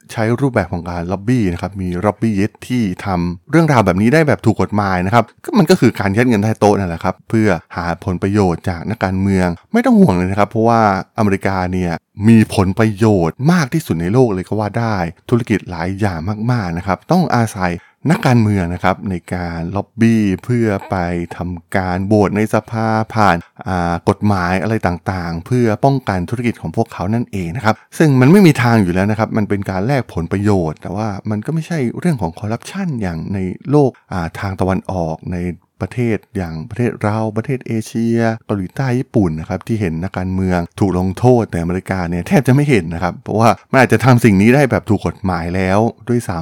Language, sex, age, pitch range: Thai, male, 20-39, 90-115 Hz